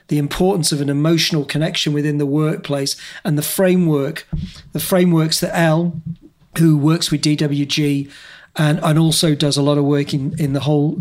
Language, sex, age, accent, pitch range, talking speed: English, male, 40-59, British, 145-170 Hz, 175 wpm